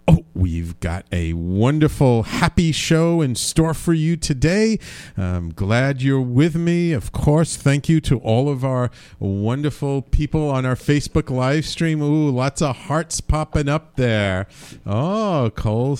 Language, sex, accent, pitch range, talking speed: English, male, American, 95-145 Hz, 155 wpm